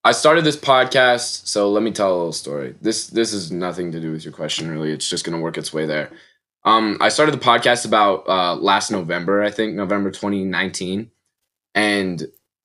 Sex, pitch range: male, 95-120 Hz